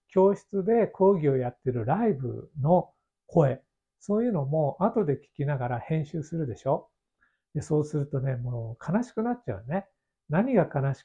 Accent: native